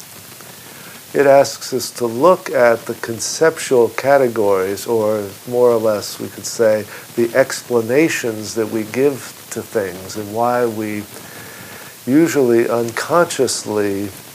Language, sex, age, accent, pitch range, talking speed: English, male, 50-69, American, 100-120 Hz, 115 wpm